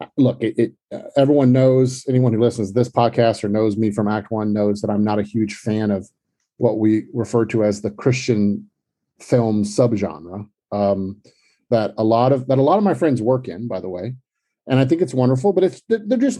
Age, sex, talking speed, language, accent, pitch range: 40-59, male, 220 wpm, English, American, 110-140 Hz